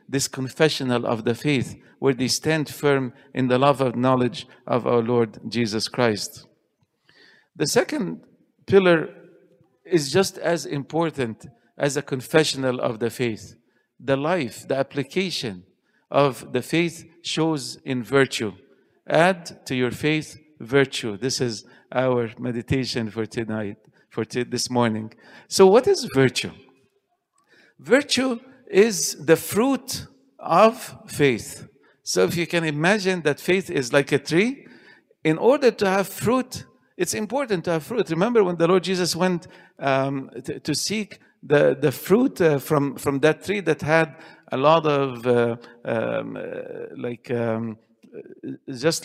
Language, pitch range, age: English, 130-190 Hz, 50-69